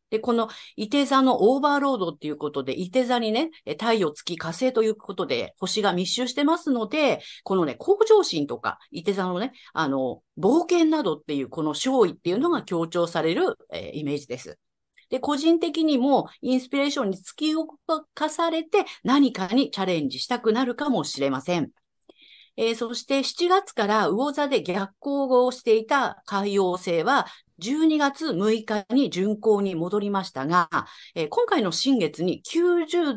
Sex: female